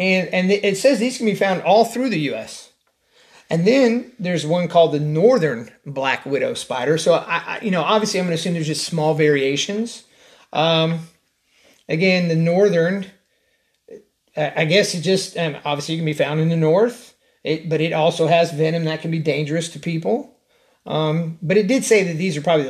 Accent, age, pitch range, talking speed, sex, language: American, 30-49, 155-190 Hz, 195 wpm, male, English